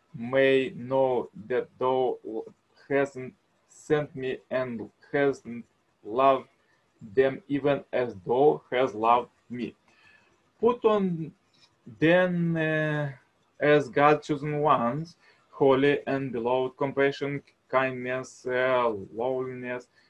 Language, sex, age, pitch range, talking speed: English, male, 20-39, 130-145 Hz, 95 wpm